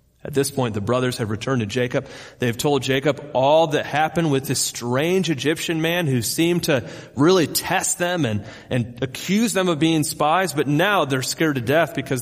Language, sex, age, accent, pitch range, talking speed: English, male, 30-49, American, 120-150 Hz, 195 wpm